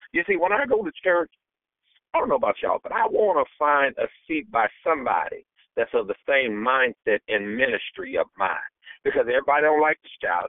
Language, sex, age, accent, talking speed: English, male, 50-69, American, 205 wpm